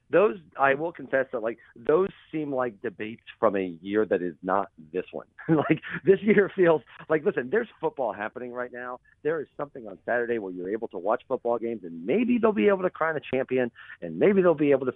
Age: 40-59